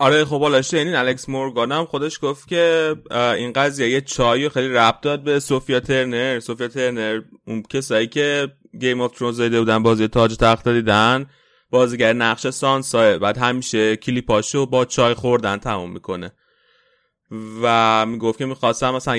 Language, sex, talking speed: Persian, male, 150 wpm